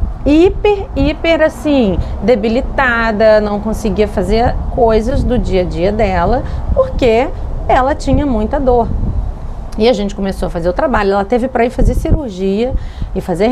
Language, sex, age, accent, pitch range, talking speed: Portuguese, female, 40-59, Brazilian, 195-280 Hz, 150 wpm